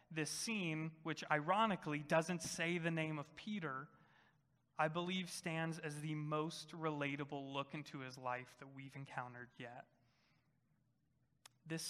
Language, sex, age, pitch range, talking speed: English, male, 30-49, 140-160 Hz, 130 wpm